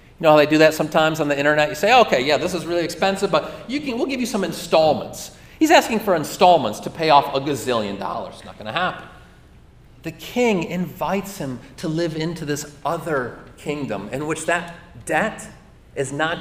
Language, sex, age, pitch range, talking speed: English, male, 40-59, 135-180 Hz, 210 wpm